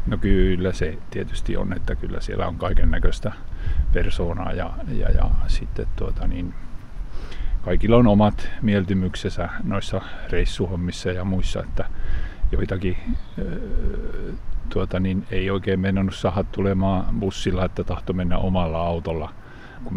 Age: 50-69